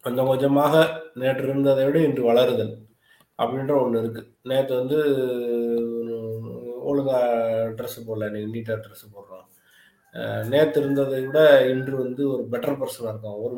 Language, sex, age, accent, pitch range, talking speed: Tamil, male, 20-39, native, 110-135 Hz, 130 wpm